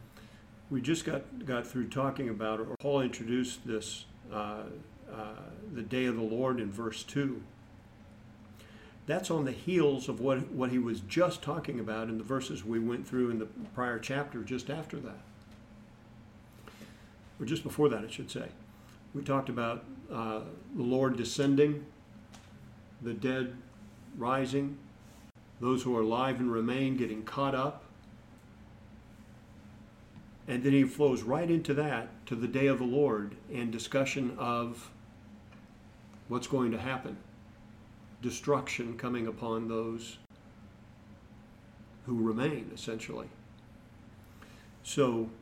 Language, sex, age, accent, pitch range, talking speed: English, male, 50-69, American, 110-130 Hz, 130 wpm